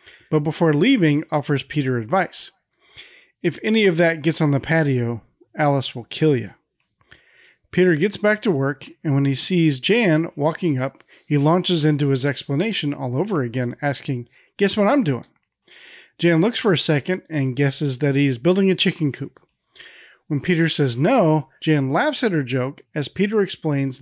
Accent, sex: American, male